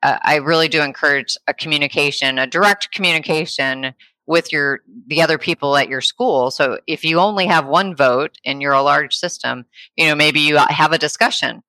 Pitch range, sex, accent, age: 150-205 Hz, female, American, 30-49